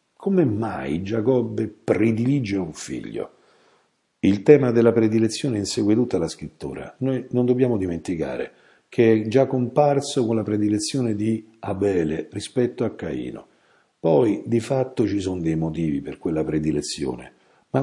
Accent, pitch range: native, 85-125 Hz